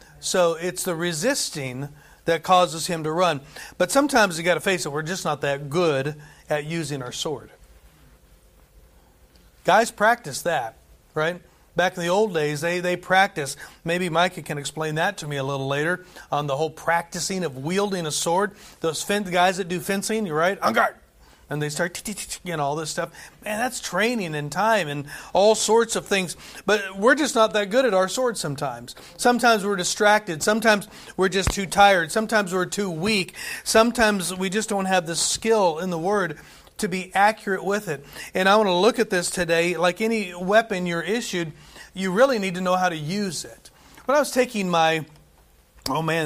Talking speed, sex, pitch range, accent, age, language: 190 wpm, male, 155-205 Hz, American, 40-59, English